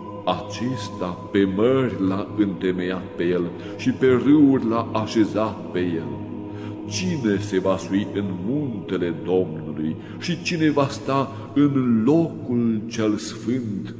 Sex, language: male, Romanian